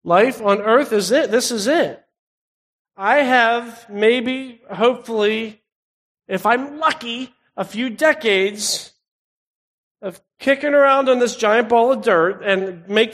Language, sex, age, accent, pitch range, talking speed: English, male, 40-59, American, 190-250 Hz, 130 wpm